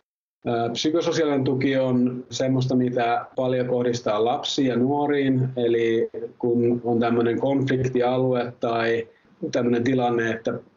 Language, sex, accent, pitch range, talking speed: Finnish, male, native, 115-130 Hz, 105 wpm